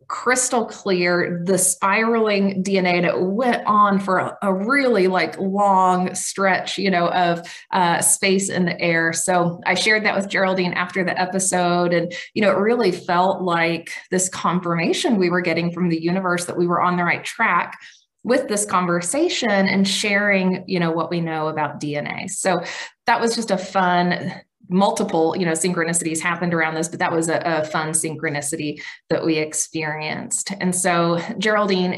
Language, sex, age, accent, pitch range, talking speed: English, female, 20-39, American, 170-200 Hz, 170 wpm